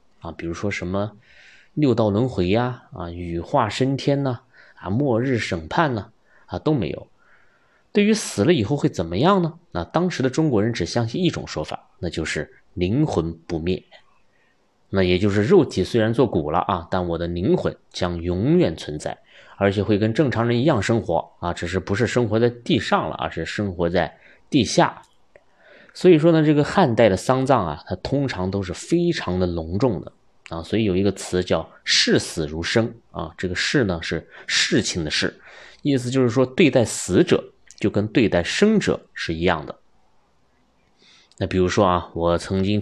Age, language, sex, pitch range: 20-39, Chinese, male, 90-130 Hz